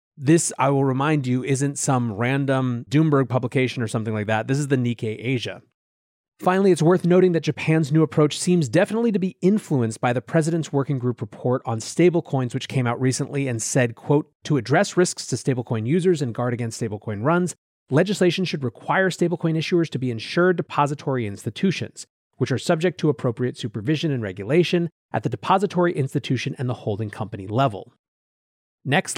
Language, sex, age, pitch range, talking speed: English, male, 30-49, 125-175 Hz, 175 wpm